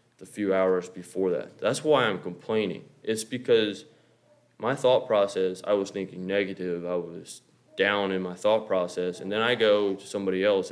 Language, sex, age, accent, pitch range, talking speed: English, male, 20-39, American, 95-110 Hz, 180 wpm